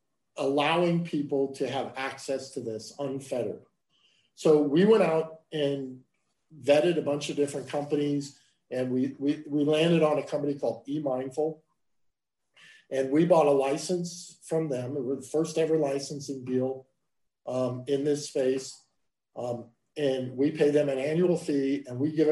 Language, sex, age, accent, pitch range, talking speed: English, male, 50-69, American, 135-160 Hz, 155 wpm